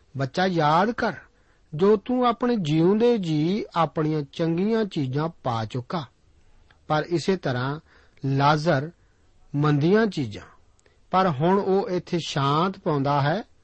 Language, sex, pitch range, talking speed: Punjabi, male, 135-185 Hz, 120 wpm